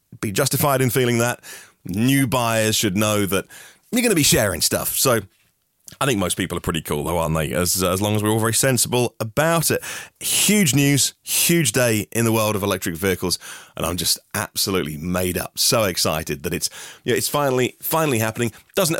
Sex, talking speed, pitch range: male, 200 wpm, 100-135 Hz